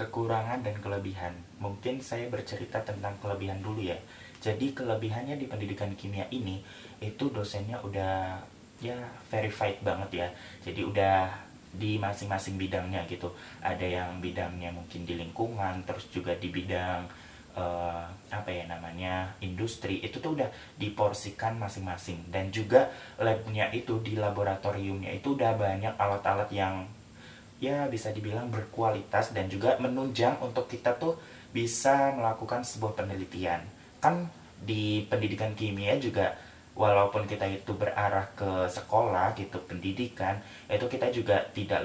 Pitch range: 95-110 Hz